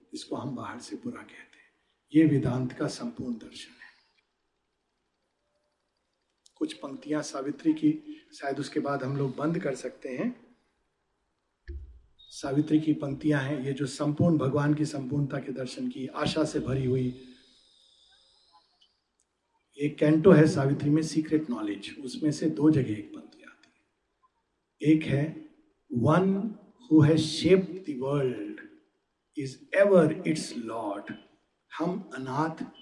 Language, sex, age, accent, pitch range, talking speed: Hindi, male, 50-69, native, 145-245 Hz, 125 wpm